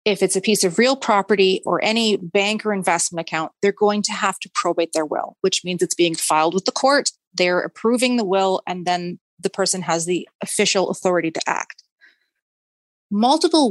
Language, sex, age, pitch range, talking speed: English, female, 30-49, 180-210 Hz, 195 wpm